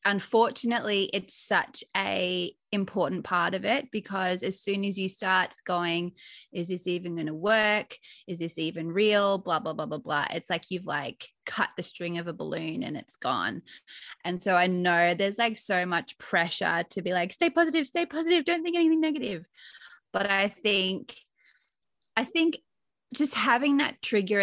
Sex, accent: female, Australian